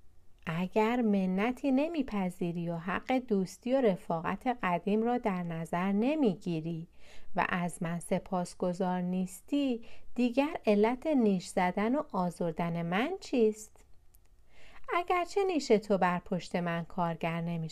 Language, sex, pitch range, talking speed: Persian, female, 180-255 Hz, 120 wpm